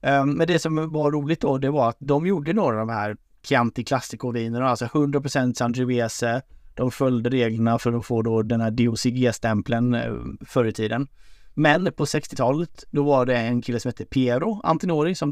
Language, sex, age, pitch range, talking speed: Swedish, male, 30-49, 115-140 Hz, 190 wpm